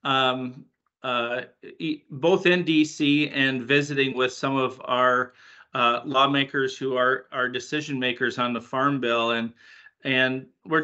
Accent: American